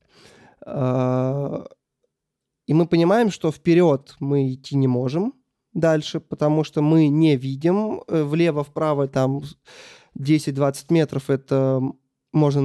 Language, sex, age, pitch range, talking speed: Russian, male, 20-39, 135-170 Hz, 100 wpm